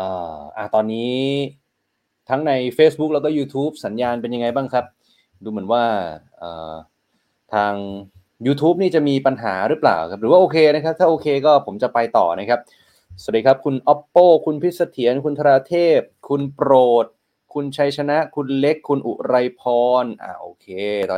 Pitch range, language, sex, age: 120-150 Hz, Thai, male, 20-39